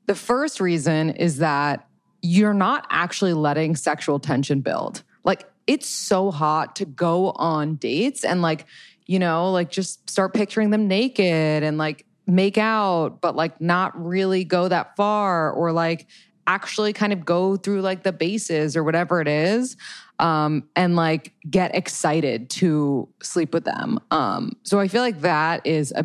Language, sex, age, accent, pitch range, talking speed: English, female, 20-39, American, 160-205 Hz, 165 wpm